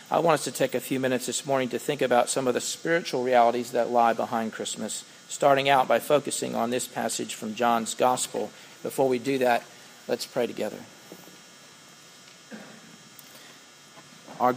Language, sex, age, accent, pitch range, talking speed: English, male, 40-59, American, 115-125 Hz, 165 wpm